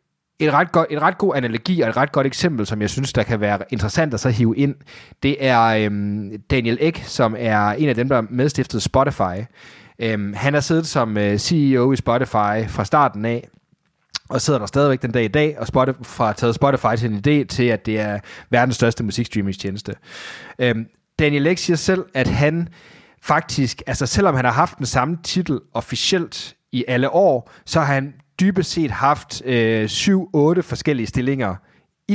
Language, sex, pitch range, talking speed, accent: Danish, male, 115-160 Hz, 185 wpm, native